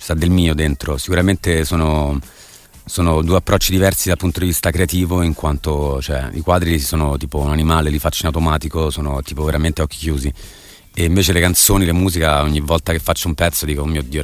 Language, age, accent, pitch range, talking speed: Italian, 30-49, native, 80-95 Hz, 205 wpm